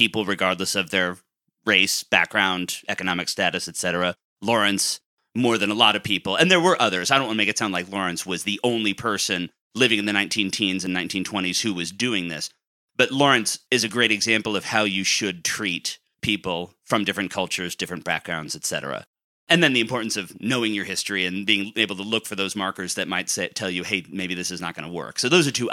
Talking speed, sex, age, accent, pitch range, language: 220 wpm, male, 30-49, American, 95-120 Hz, English